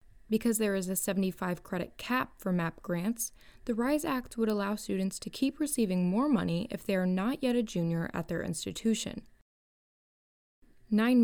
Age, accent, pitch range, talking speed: 20-39, American, 175-220 Hz, 165 wpm